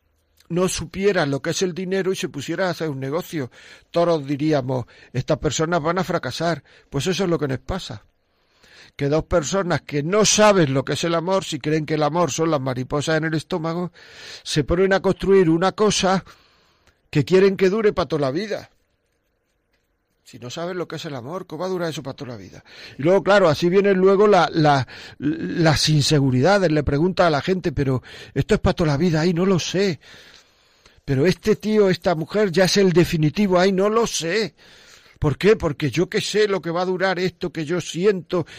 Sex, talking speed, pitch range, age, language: male, 210 wpm, 160-195 Hz, 50-69, Spanish